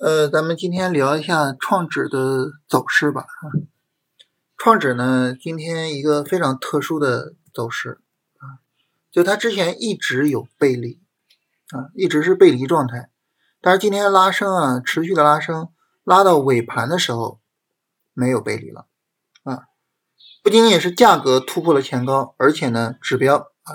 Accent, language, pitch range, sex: native, Chinese, 135-185 Hz, male